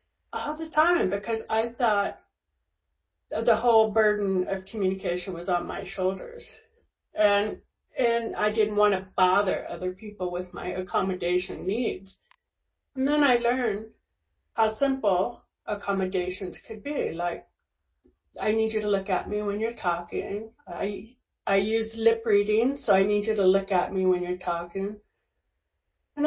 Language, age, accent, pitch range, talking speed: English, 40-59, American, 185-235 Hz, 150 wpm